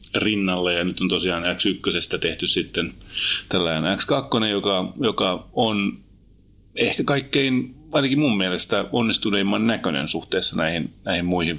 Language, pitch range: Finnish, 90-110 Hz